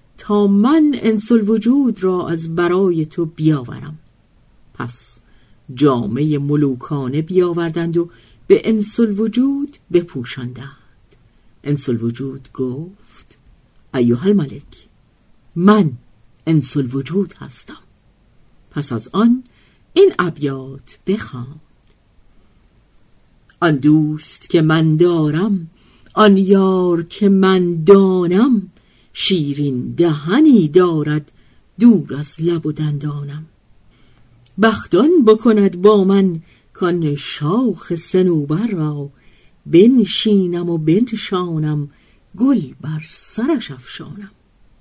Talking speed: 90 wpm